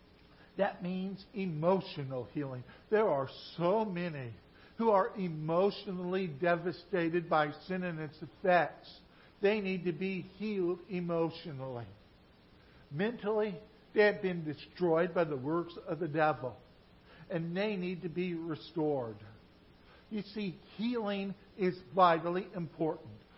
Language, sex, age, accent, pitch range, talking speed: English, male, 60-79, American, 155-195 Hz, 120 wpm